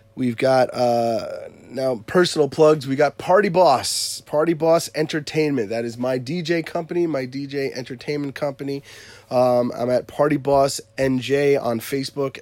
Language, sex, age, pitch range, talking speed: English, male, 30-49, 115-145 Hz, 145 wpm